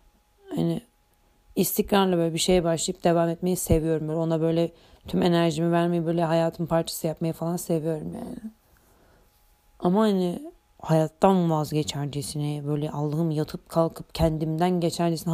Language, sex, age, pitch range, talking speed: Turkish, female, 30-49, 160-180 Hz, 125 wpm